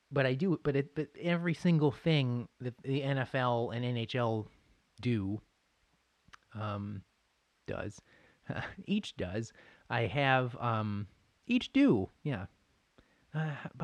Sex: male